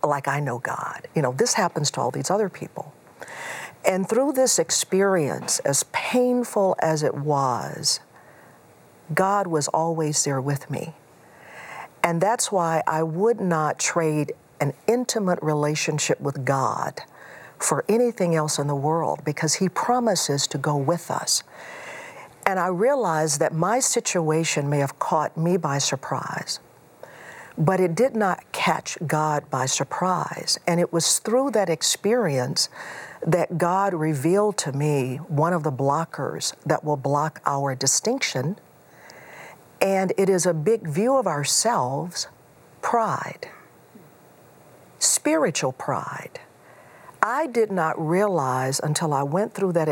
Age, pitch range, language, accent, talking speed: 50-69, 145-190 Hz, English, American, 135 wpm